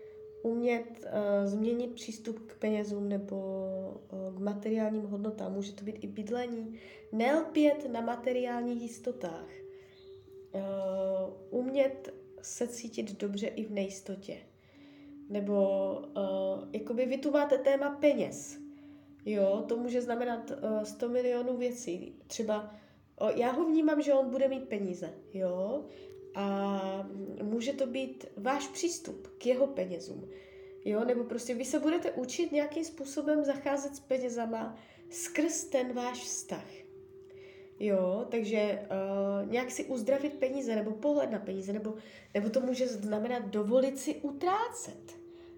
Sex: female